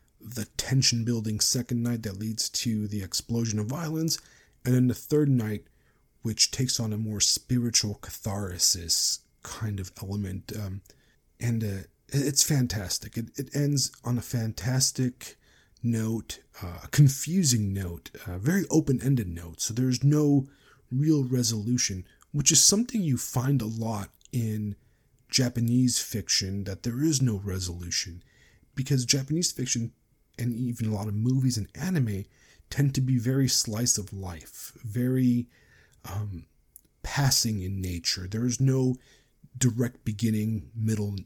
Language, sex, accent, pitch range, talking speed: English, male, American, 105-130 Hz, 140 wpm